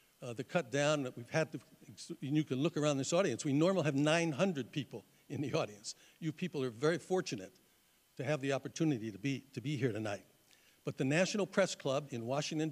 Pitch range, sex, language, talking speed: 130-160 Hz, male, English, 210 wpm